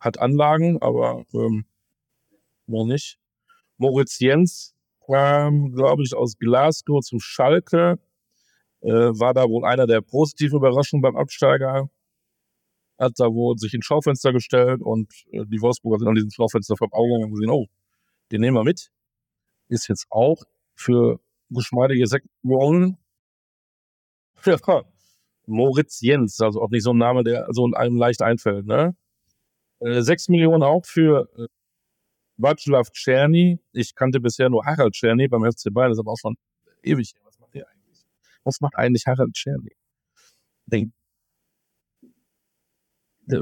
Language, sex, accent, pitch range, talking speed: German, male, German, 115-140 Hz, 140 wpm